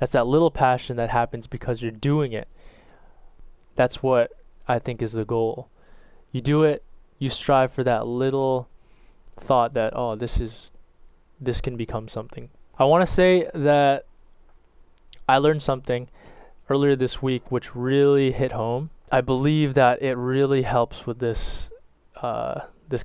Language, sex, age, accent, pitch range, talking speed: English, male, 20-39, American, 115-130 Hz, 155 wpm